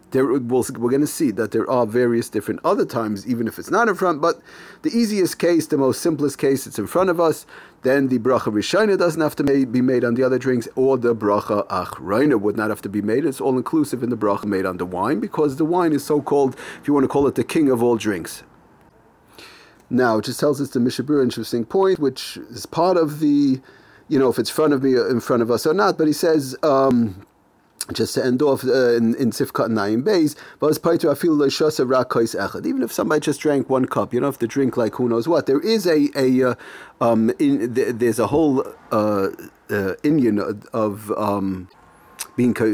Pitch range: 115-150 Hz